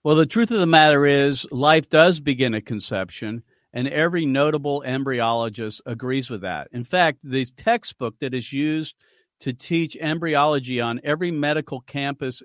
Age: 50-69